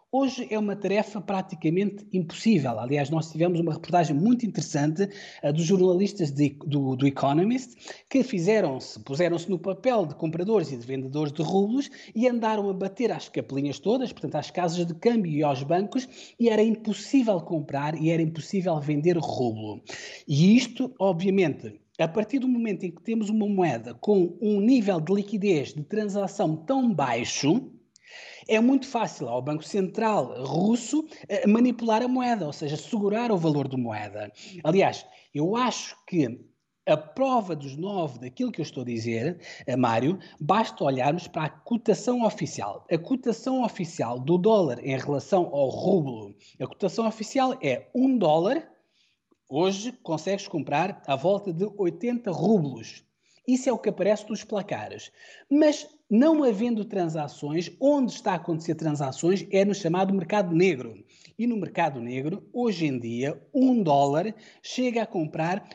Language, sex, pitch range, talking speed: Portuguese, male, 150-220 Hz, 155 wpm